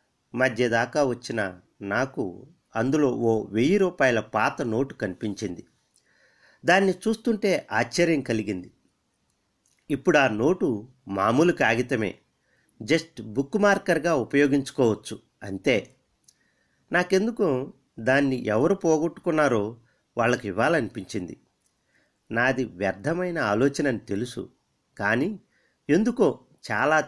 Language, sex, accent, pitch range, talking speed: Telugu, male, native, 110-160 Hz, 80 wpm